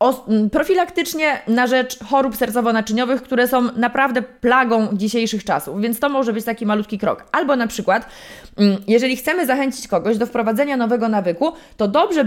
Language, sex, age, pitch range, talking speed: Polish, female, 20-39, 220-265 Hz, 150 wpm